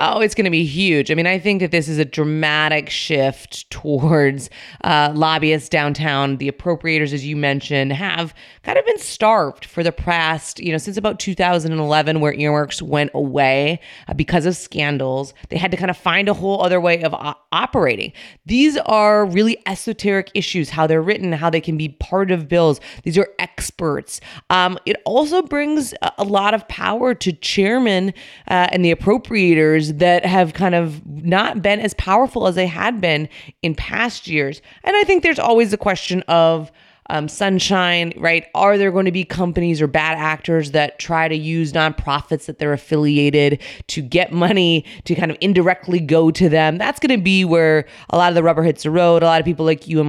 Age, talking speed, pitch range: 30-49, 195 wpm, 150-185 Hz